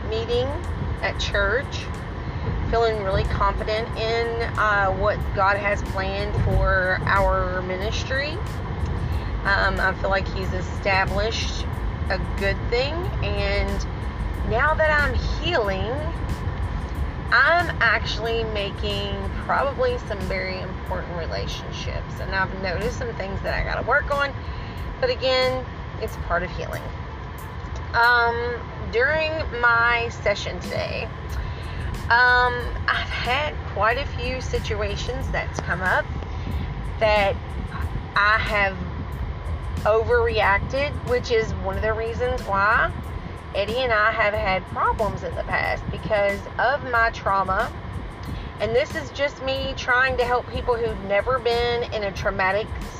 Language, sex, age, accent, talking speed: English, female, 30-49, American, 120 wpm